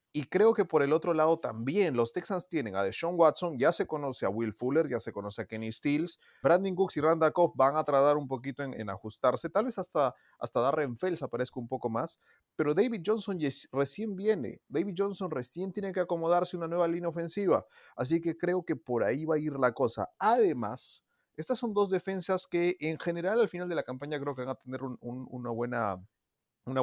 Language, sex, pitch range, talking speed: Spanish, male, 125-170 Hz, 215 wpm